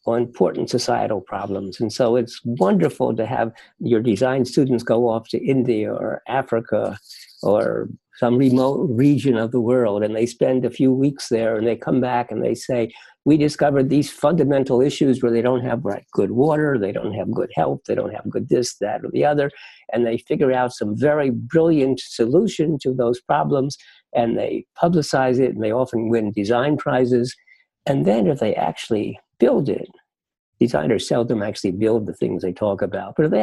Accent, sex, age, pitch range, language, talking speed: American, male, 50-69, 115-140 Hz, English, 190 wpm